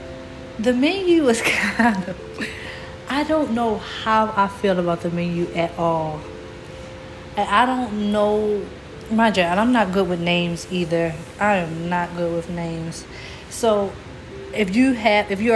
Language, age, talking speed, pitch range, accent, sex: English, 30-49, 155 wpm, 180-225 Hz, American, female